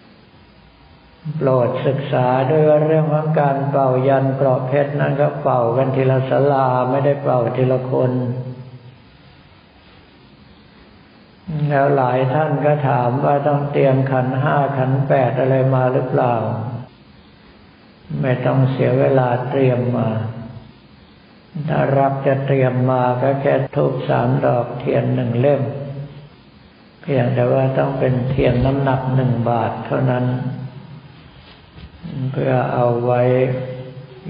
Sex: male